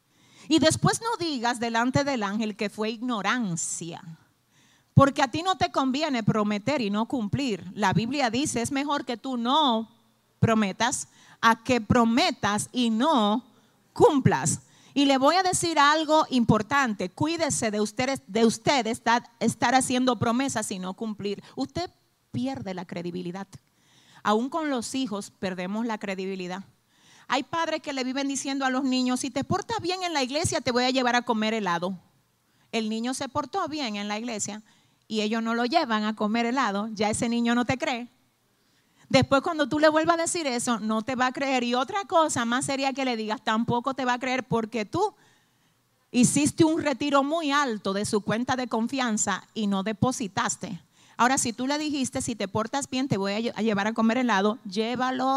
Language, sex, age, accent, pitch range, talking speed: Spanish, female, 40-59, American, 215-275 Hz, 180 wpm